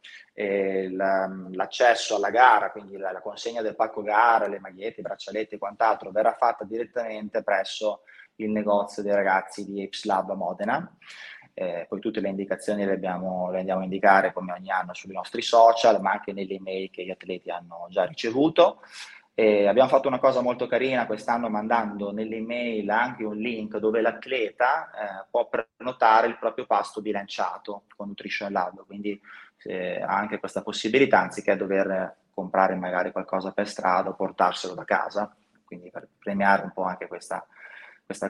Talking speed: 165 wpm